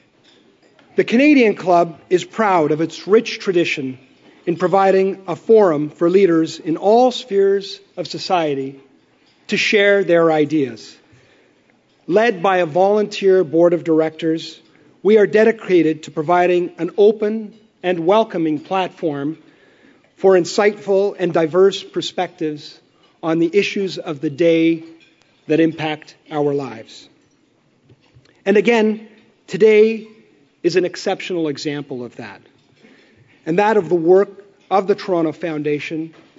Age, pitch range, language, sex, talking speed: 40-59, 160-200 Hz, English, male, 120 wpm